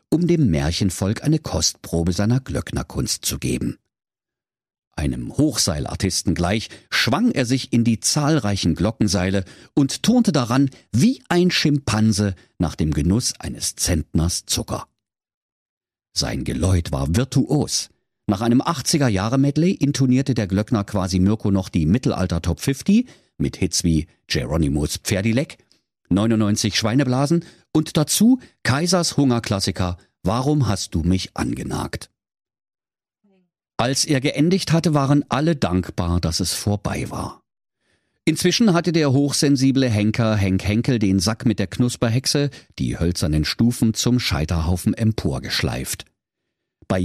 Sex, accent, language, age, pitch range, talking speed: male, German, German, 50-69, 95-140 Hz, 120 wpm